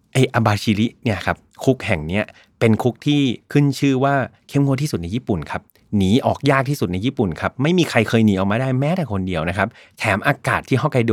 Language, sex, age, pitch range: Thai, male, 30-49, 100-130 Hz